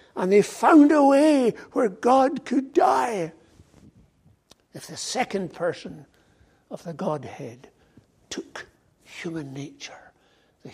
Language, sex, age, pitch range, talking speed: English, male, 60-79, 145-220 Hz, 110 wpm